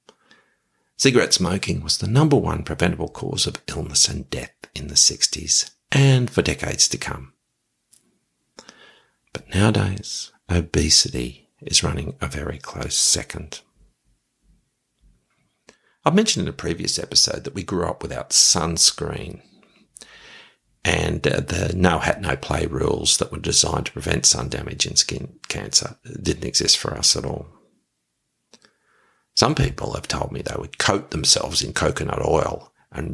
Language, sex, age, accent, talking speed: English, male, 50-69, Australian, 140 wpm